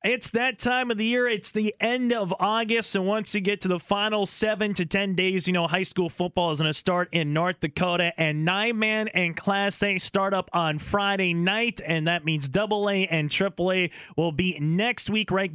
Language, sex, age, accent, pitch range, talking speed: English, male, 20-39, American, 180-215 Hz, 230 wpm